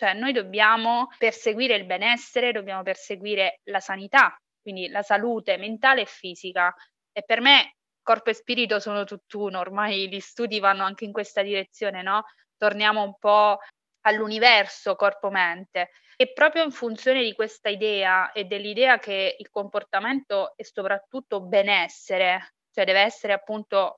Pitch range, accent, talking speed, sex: 195-230 Hz, native, 145 wpm, female